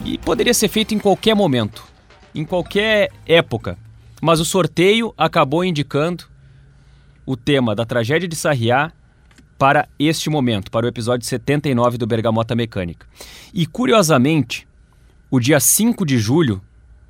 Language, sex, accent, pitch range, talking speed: Portuguese, male, Brazilian, 115-160 Hz, 135 wpm